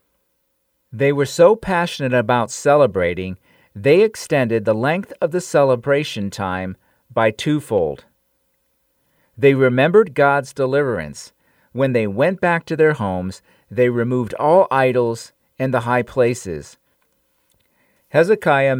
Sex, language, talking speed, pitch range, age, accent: male, English, 115 wpm, 115-155 Hz, 50-69, American